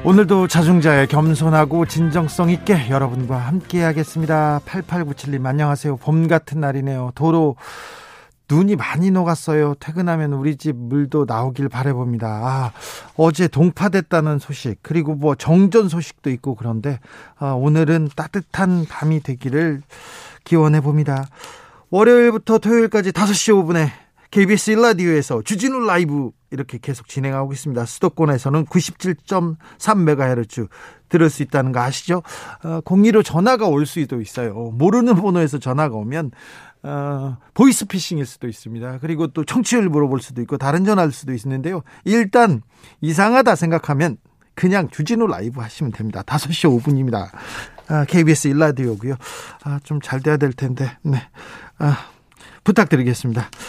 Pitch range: 135-180 Hz